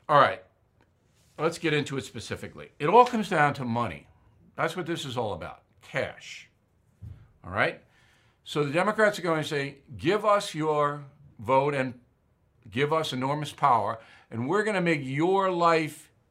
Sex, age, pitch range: male, 60-79, 110-145 Hz